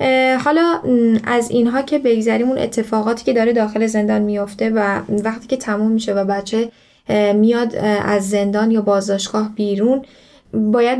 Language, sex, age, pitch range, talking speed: Persian, female, 10-29, 205-230 Hz, 140 wpm